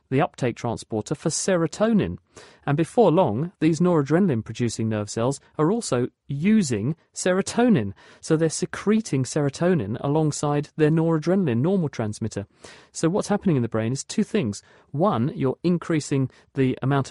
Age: 40-59